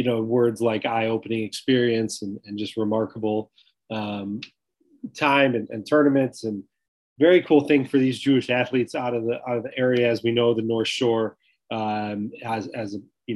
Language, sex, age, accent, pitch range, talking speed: English, male, 30-49, American, 110-130 Hz, 180 wpm